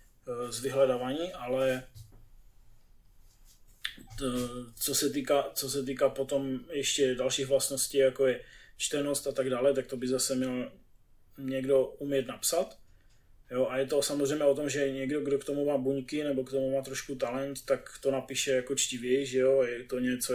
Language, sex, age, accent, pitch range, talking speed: Czech, male, 20-39, native, 125-140 Hz, 170 wpm